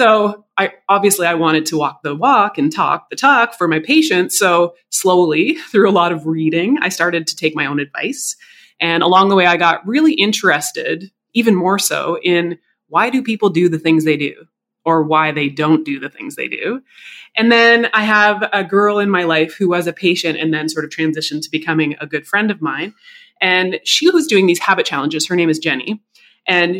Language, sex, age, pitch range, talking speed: English, female, 20-39, 160-210 Hz, 215 wpm